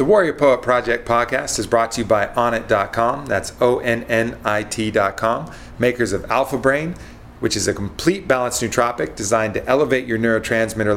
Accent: American